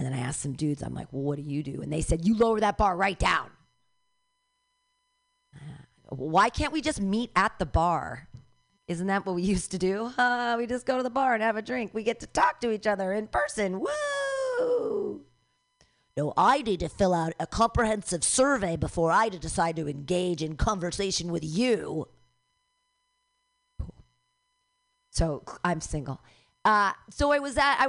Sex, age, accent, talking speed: female, 40-59, American, 185 wpm